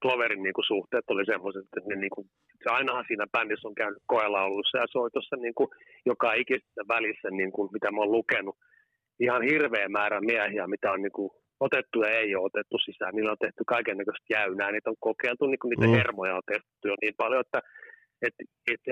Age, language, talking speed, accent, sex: 30-49, Finnish, 205 wpm, native, male